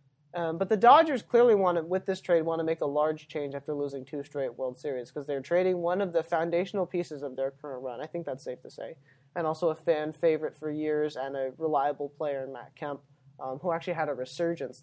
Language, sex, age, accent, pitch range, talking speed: English, male, 20-39, American, 140-175 Hz, 240 wpm